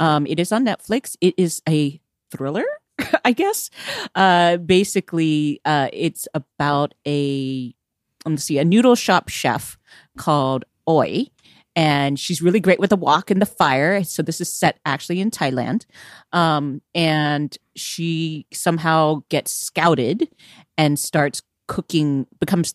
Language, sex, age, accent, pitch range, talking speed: English, female, 40-59, American, 140-180 Hz, 135 wpm